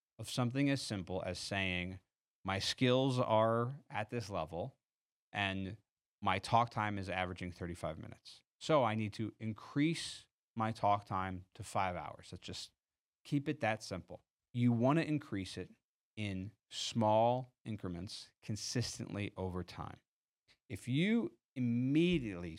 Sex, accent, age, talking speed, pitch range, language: male, American, 30-49, 135 wpm, 95-120 Hz, English